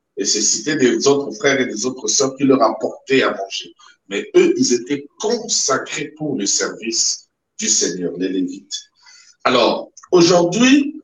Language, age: French, 50-69